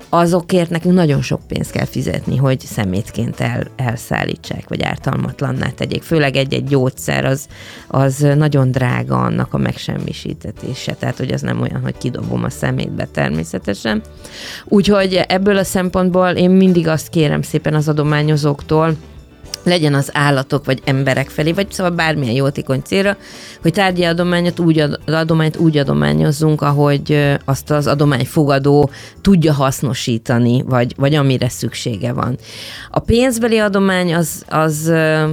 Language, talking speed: Hungarian, 130 wpm